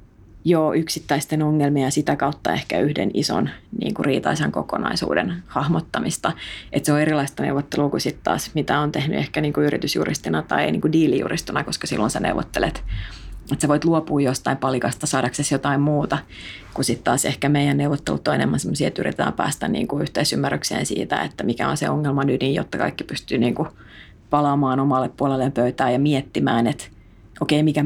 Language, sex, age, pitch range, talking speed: Finnish, female, 30-49, 115-150 Hz, 170 wpm